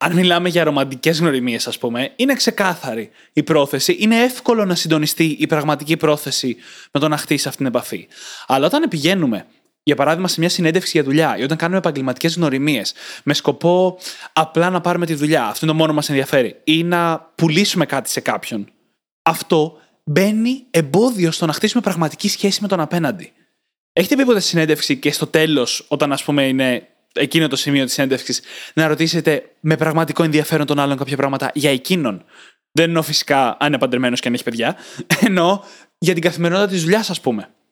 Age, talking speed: 20-39, 185 wpm